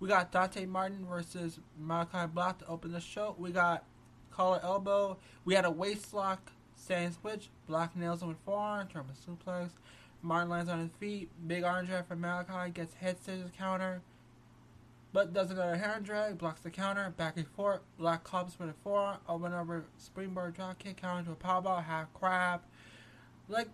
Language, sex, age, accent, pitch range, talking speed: English, male, 20-39, American, 165-195 Hz, 195 wpm